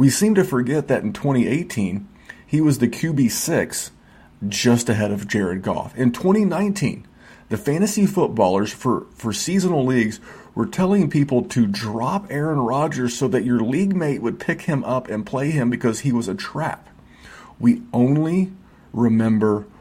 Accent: American